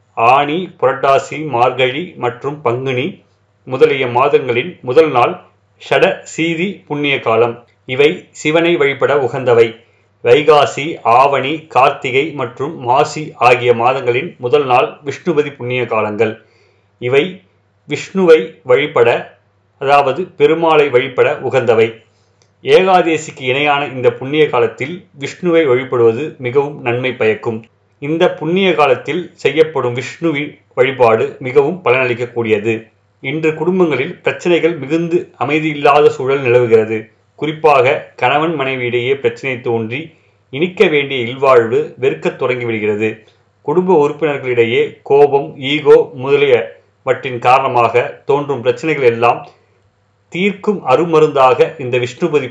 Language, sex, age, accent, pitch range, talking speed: Tamil, male, 30-49, native, 125-185 Hz, 95 wpm